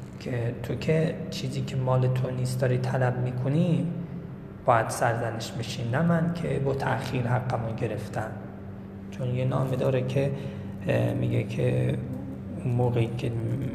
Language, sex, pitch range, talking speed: Persian, male, 110-135 Hz, 130 wpm